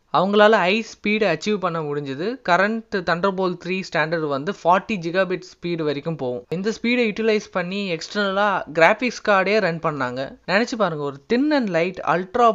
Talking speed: 155 wpm